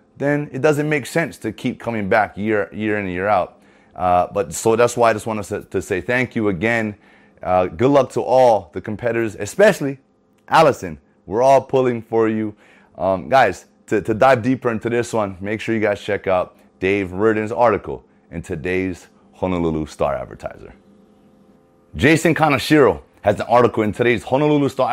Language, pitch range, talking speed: English, 95-125 Hz, 180 wpm